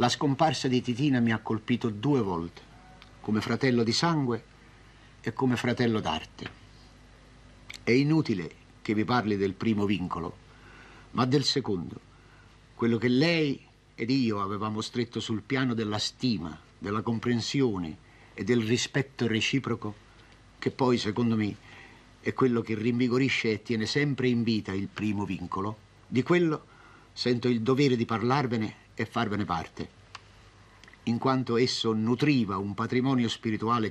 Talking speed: 140 wpm